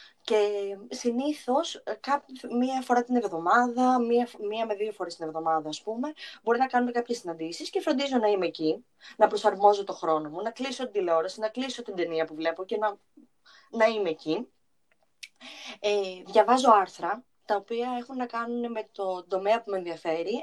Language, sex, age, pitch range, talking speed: Greek, female, 20-39, 190-240 Hz, 165 wpm